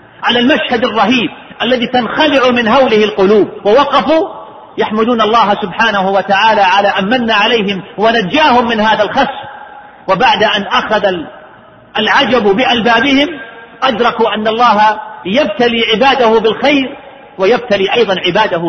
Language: Arabic